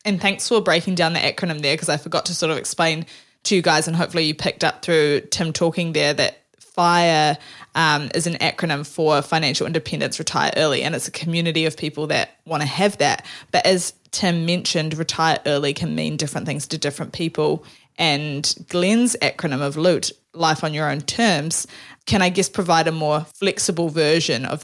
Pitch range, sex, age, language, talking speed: 155-185 Hz, female, 20-39, English, 195 wpm